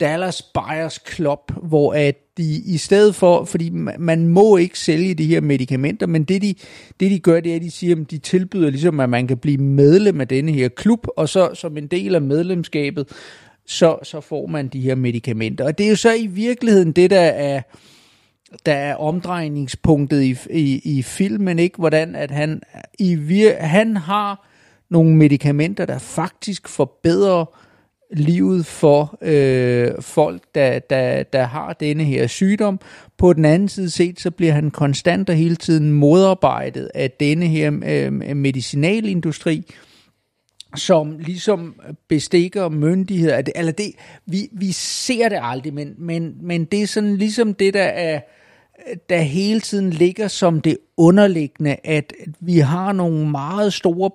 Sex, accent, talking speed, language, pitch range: male, native, 155 wpm, Danish, 145-185 Hz